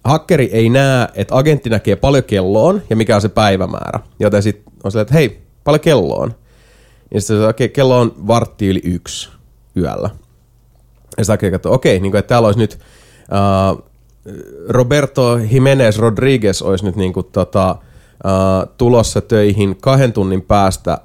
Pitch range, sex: 95-125 Hz, male